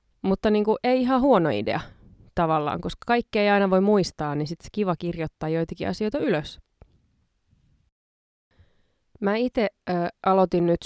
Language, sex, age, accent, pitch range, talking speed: Finnish, female, 20-39, native, 155-205 Hz, 145 wpm